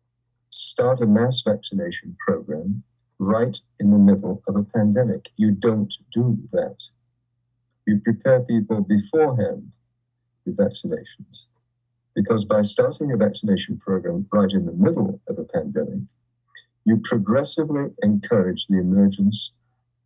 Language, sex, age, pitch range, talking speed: English, male, 50-69, 110-125 Hz, 120 wpm